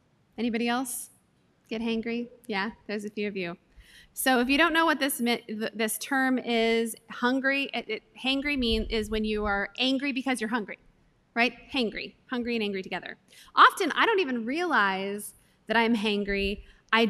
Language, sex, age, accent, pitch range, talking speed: English, female, 20-39, American, 210-260 Hz, 170 wpm